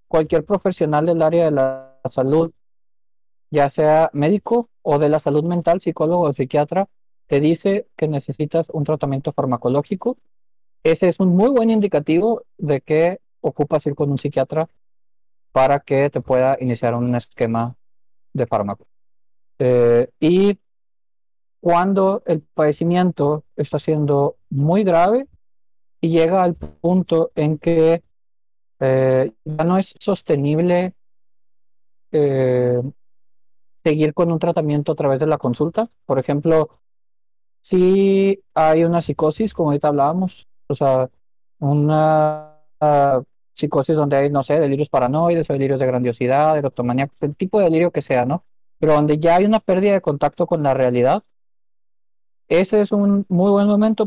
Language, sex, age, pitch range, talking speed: Spanish, male, 40-59, 140-175 Hz, 140 wpm